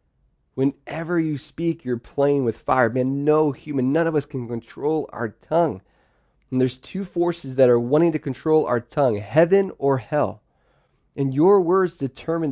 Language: English